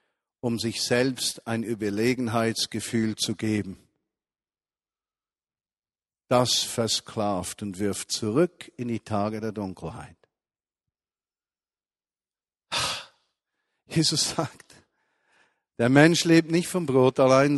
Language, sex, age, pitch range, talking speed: German, male, 50-69, 115-155 Hz, 90 wpm